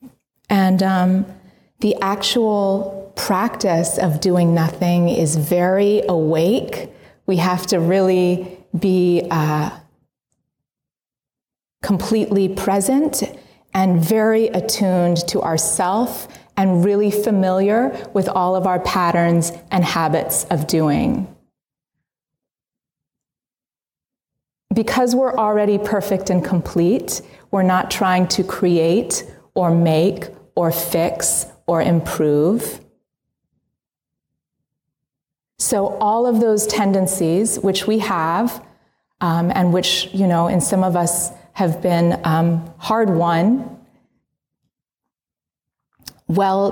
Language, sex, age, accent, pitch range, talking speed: English, female, 30-49, American, 170-200 Hz, 100 wpm